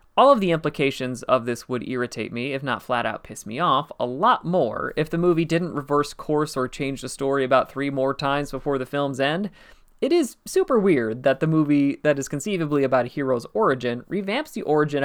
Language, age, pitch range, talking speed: English, 30-49, 120-150 Hz, 215 wpm